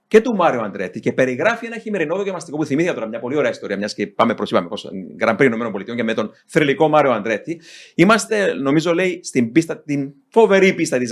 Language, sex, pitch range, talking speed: Greek, male, 125-190 Hz, 210 wpm